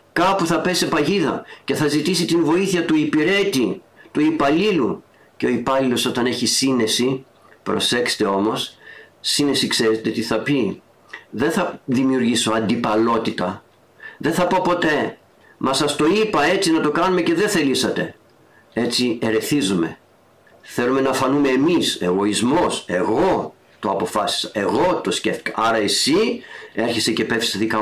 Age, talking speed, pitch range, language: 50-69, 135 wpm, 115-170 Hz, Greek